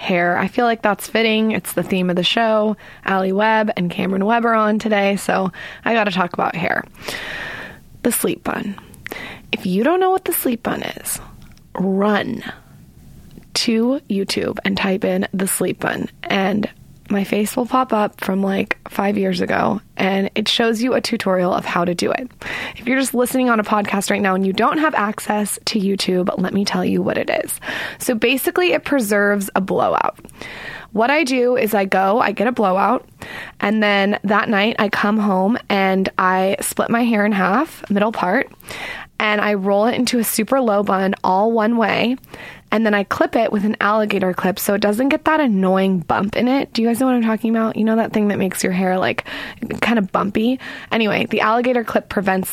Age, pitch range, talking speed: 20-39, 195-230 Hz, 205 wpm